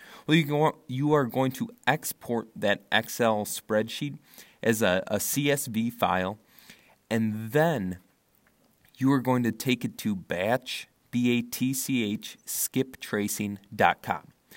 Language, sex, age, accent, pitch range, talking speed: English, male, 30-49, American, 105-135 Hz, 110 wpm